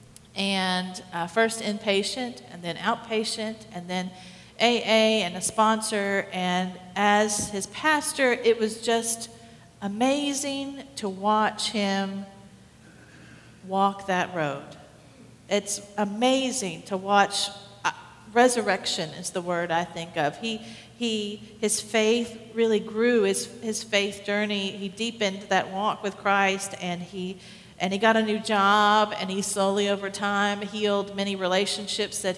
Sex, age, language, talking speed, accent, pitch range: female, 50-69, English, 135 wpm, American, 185-215 Hz